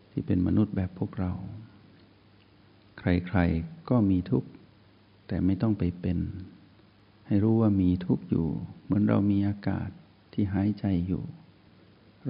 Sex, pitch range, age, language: male, 95-105 Hz, 60-79, Thai